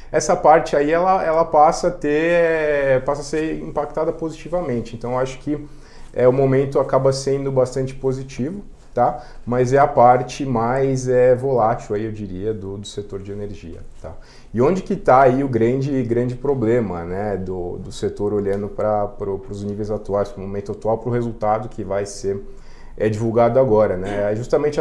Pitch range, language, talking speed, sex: 105-135 Hz, English, 185 wpm, male